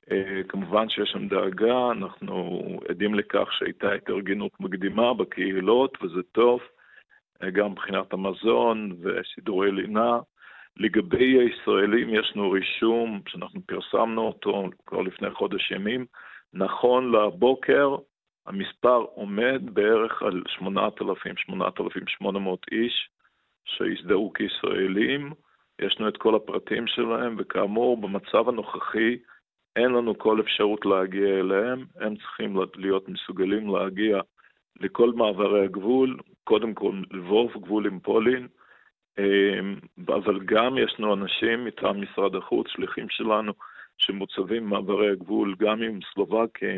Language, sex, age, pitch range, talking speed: English, male, 50-69, 100-115 Hz, 105 wpm